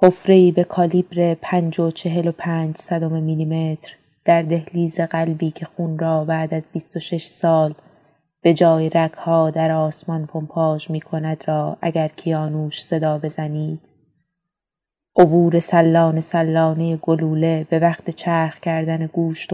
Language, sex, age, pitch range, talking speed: Persian, female, 20-39, 155-170 Hz, 115 wpm